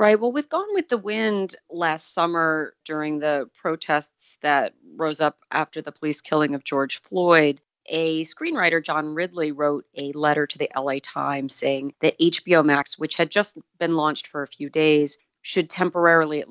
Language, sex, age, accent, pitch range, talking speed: English, female, 30-49, American, 145-175 Hz, 180 wpm